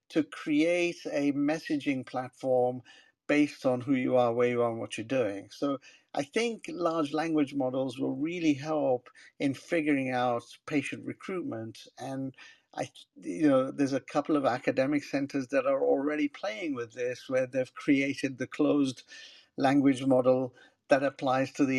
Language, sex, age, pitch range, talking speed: English, male, 60-79, 130-170 Hz, 160 wpm